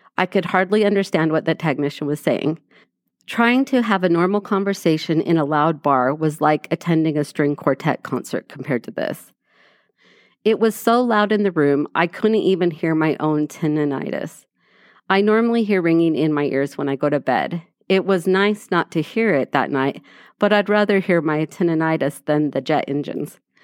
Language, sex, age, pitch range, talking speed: English, female, 40-59, 150-195 Hz, 190 wpm